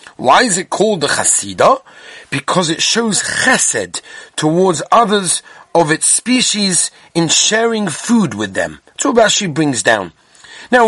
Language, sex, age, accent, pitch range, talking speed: English, male, 30-49, British, 165-225 Hz, 130 wpm